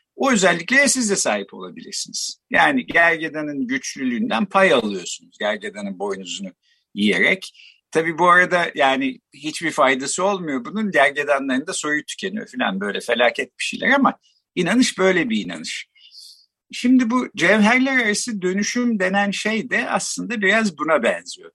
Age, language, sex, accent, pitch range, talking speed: 50-69, Turkish, male, native, 155-240 Hz, 135 wpm